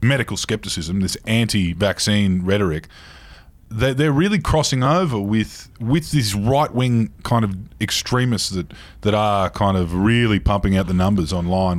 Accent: Australian